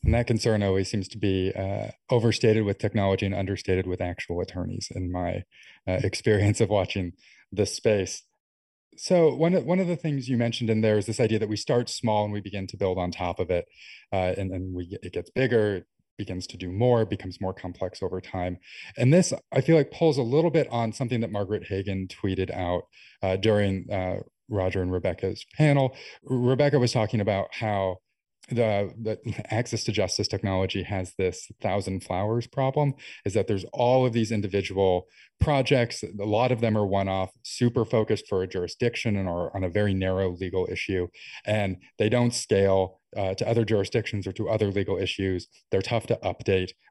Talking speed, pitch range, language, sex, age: 190 wpm, 95-115 Hz, English, male, 30-49